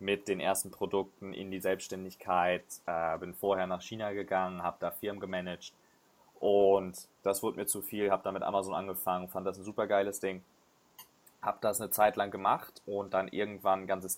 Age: 20-39